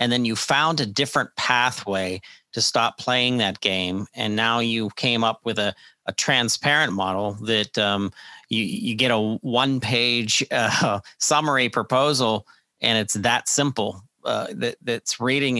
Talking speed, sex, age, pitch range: 155 wpm, male, 40-59, 105-125 Hz